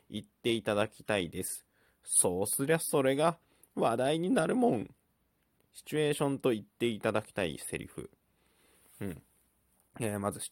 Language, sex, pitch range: Japanese, male, 105-150 Hz